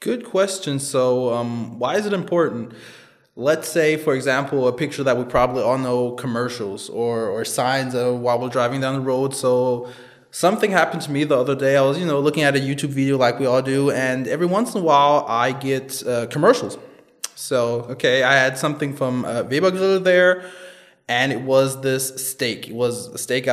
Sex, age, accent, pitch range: male, 20-39, American, 125-145 Hz